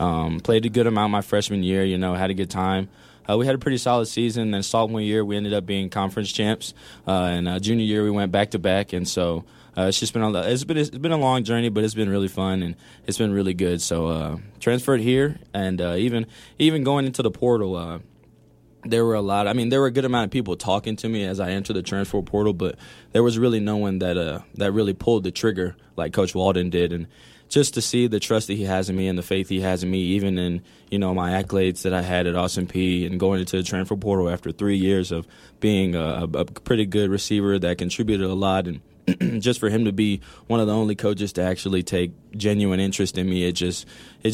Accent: American